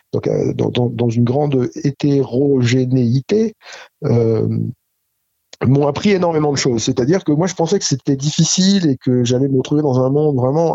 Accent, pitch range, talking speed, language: French, 125-155 Hz, 160 wpm, French